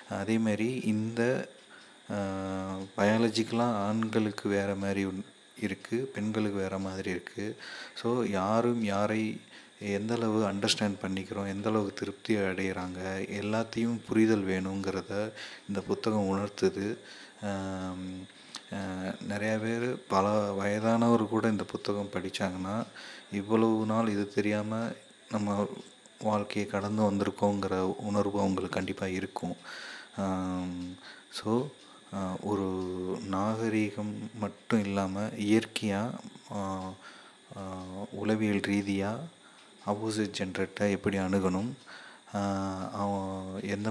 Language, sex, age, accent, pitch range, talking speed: Tamil, male, 30-49, native, 95-110 Hz, 80 wpm